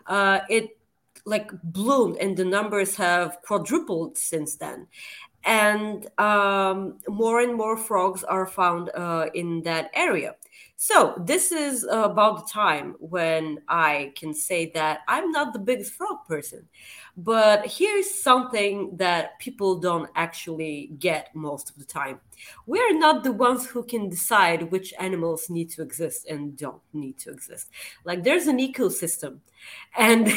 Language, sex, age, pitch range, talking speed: English, female, 30-49, 175-245 Hz, 150 wpm